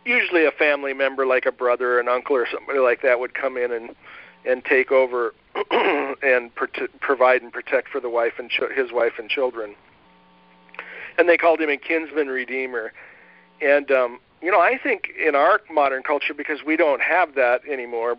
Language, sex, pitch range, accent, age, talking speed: English, male, 115-150 Hz, American, 50-69, 190 wpm